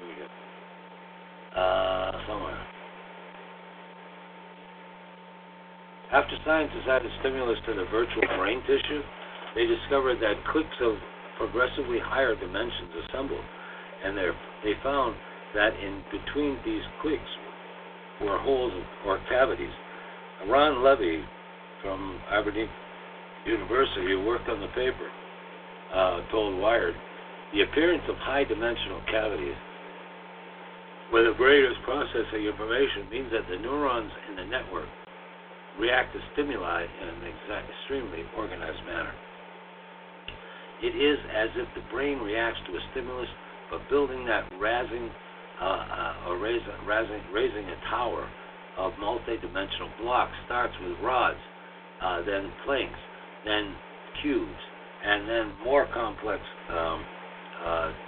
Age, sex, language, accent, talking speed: 60-79, male, English, American, 120 wpm